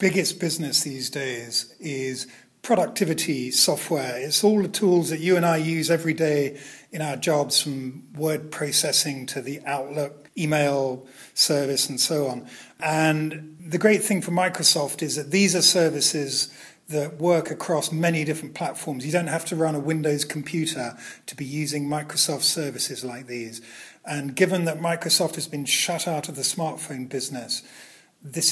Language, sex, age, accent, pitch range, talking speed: English, male, 40-59, British, 140-170 Hz, 160 wpm